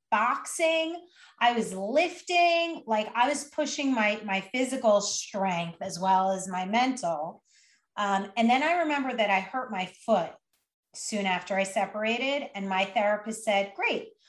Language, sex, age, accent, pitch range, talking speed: English, female, 30-49, American, 195-305 Hz, 150 wpm